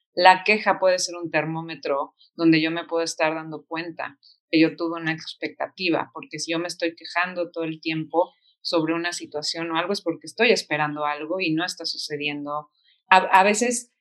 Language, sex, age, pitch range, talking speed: Spanish, female, 40-59, 160-180 Hz, 190 wpm